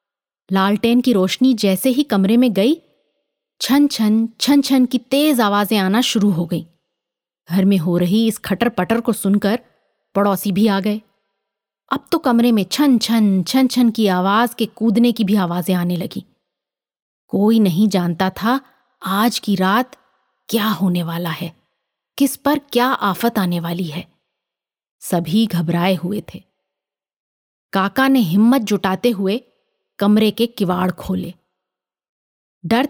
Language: Hindi